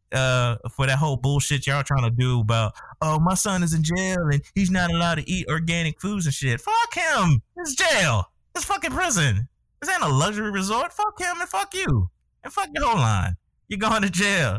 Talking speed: 215 wpm